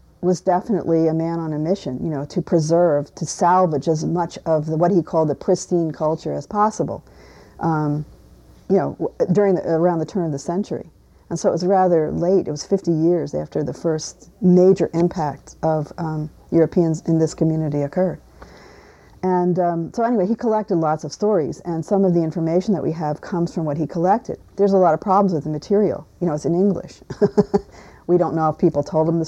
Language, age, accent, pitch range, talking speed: English, 50-69, American, 155-185 Hz, 205 wpm